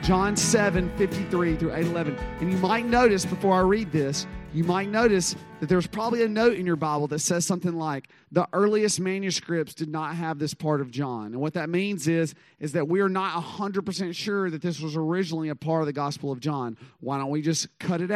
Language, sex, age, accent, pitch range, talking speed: English, male, 40-59, American, 135-180 Hz, 225 wpm